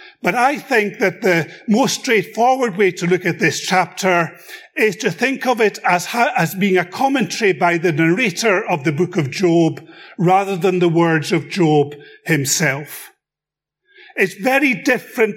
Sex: male